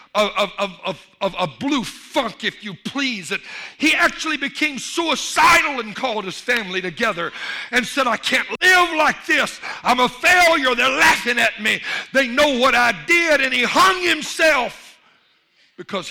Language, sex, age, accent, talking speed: English, male, 60-79, American, 155 wpm